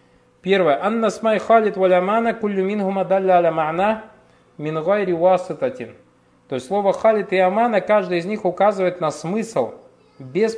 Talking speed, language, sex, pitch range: 80 wpm, Russian, male, 160-195 Hz